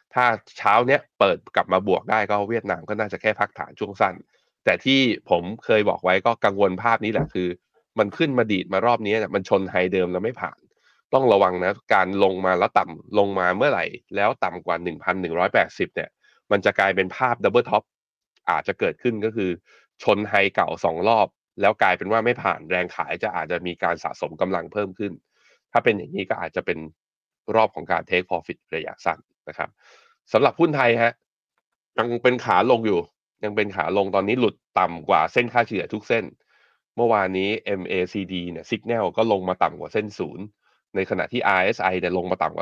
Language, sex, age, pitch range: Thai, male, 20-39, 90-115 Hz